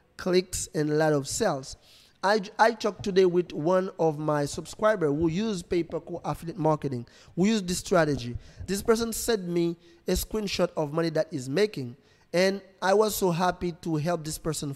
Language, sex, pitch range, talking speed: English, male, 160-200 Hz, 180 wpm